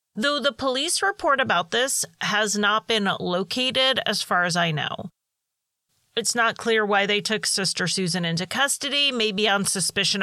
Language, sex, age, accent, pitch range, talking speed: English, female, 30-49, American, 195-260 Hz, 165 wpm